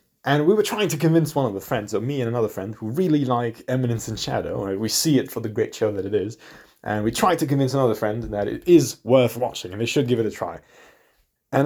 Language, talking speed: English, 270 wpm